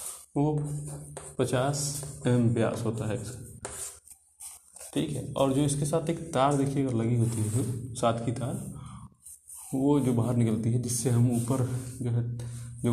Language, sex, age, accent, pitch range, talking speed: Hindi, male, 30-49, native, 120-150 Hz, 145 wpm